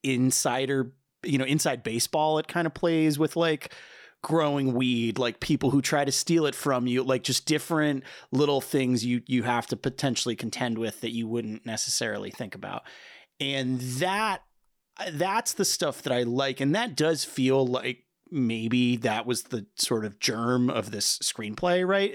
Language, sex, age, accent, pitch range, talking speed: English, male, 30-49, American, 120-145 Hz, 175 wpm